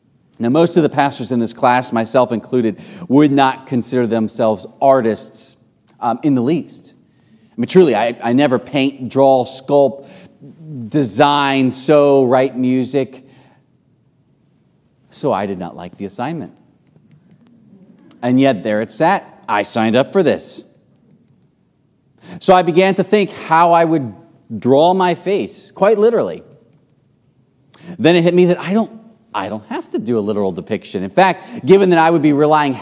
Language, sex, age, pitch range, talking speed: English, male, 40-59, 125-170 Hz, 155 wpm